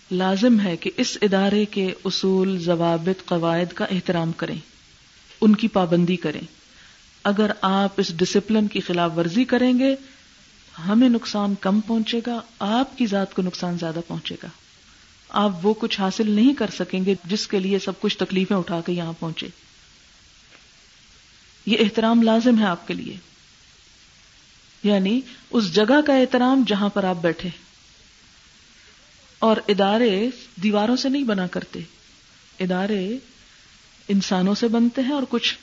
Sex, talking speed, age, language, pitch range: female, 145 wpm, 50-69, Urdu, 185-235 Hz